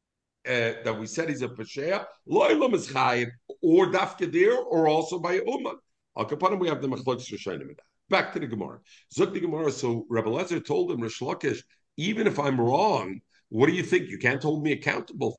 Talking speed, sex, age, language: 130 wpm, male, 50-69, English